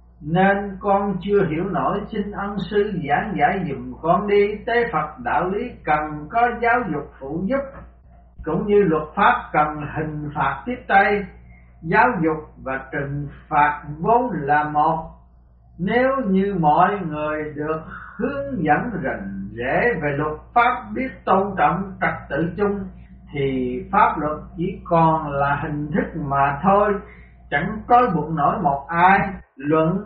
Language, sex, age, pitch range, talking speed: Vietnamese, male, 60-79, 150-210 Hz, 150 wpm